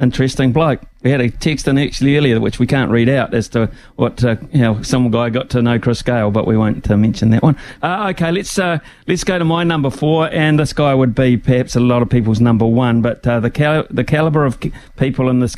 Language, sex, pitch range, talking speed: English, male, 115-135 Hz, 260 wpm